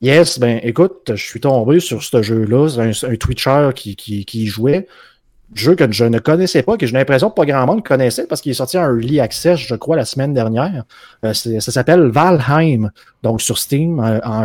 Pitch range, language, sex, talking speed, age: 115-145 Hz, French, male, 215 wpm, 30-49